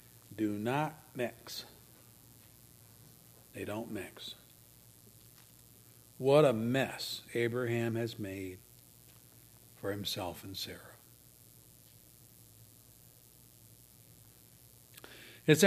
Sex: male